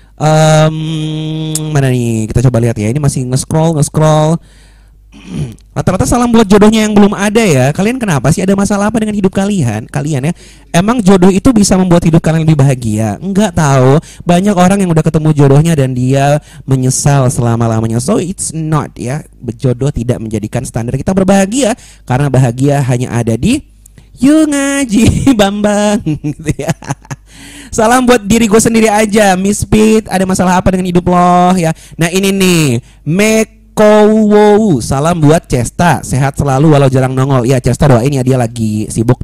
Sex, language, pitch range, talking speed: male, Indonesian, 130-200 Hz, 160 wpm